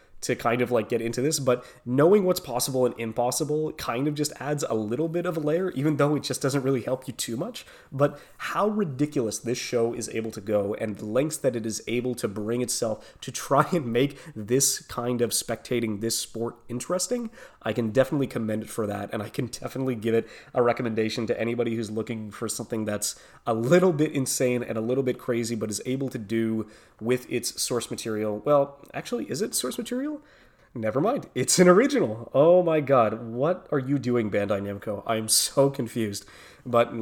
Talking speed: 205 wpm